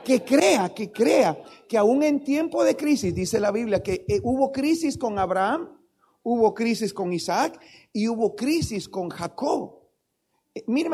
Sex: male